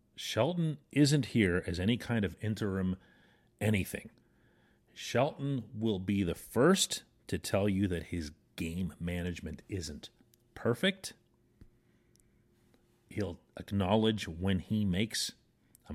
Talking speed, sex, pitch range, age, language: 110 wpm, male, 90-120 Hz, 40-59, English